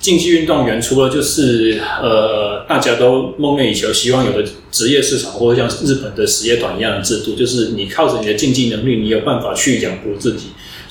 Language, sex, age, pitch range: Chinese, male, 20-39, 110-155 Hz